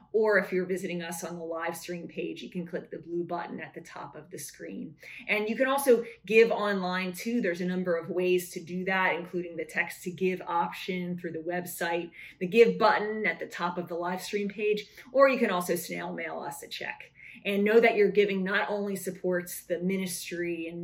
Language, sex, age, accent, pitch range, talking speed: English, female, 20-39, American, 180-220 Hz, 220 wpm